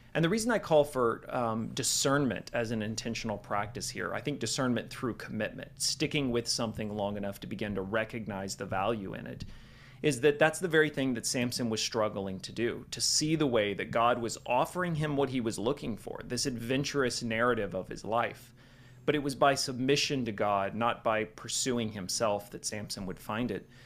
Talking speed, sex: 200 wpm, male